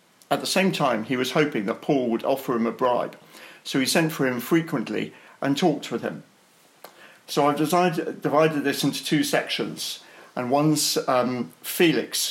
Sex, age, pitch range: male, 50-69, 130-160 Hz